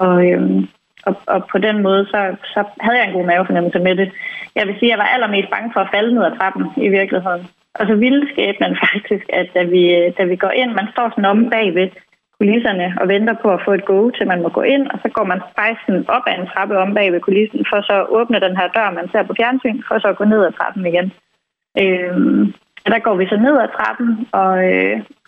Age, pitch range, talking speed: 30-49, 185-220 Hz, 245 wpm